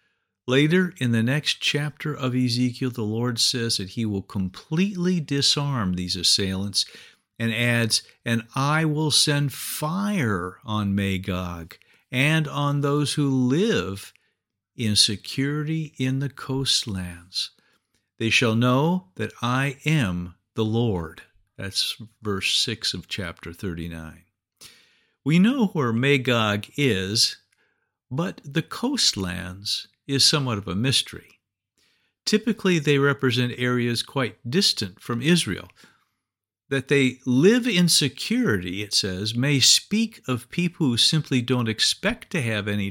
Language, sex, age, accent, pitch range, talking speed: English, male, 50-69, American, 105-145 Hz, 125 wpm